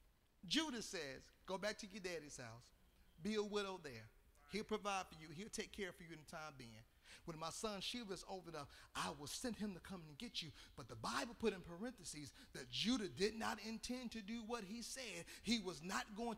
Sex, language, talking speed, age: male, English, 225 wpm, 40-59